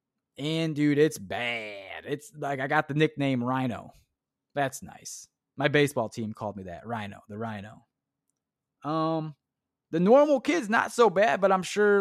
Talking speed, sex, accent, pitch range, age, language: 160 wpm, male, American, 125-165 Hz, 20-39, English